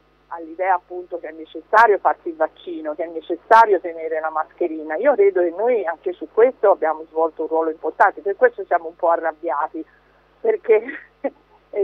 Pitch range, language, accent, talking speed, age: 165-235 Hz, Italian, native, 170 wpm, 50-69